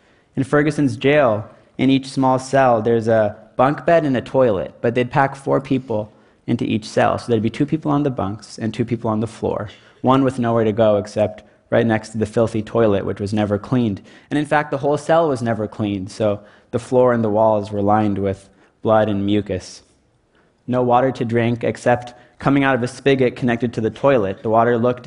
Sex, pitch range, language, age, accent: male, 110-135 Hz, Chinese, 20-39, American